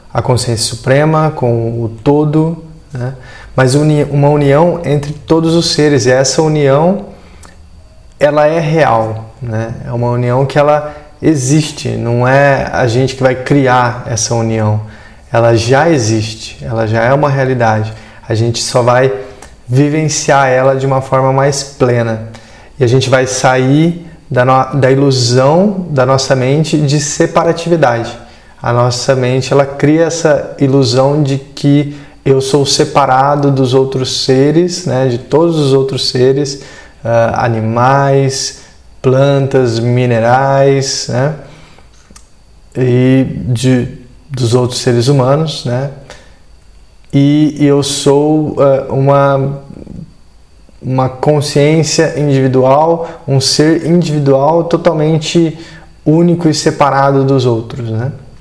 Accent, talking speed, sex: Brazilian, 120 wpm, male